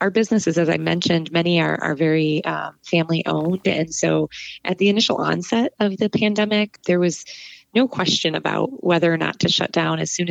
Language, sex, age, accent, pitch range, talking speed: English, female, 30-49, American, 160-195 Hz, 190 wpm